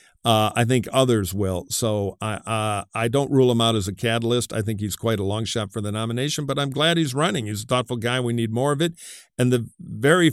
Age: 50-69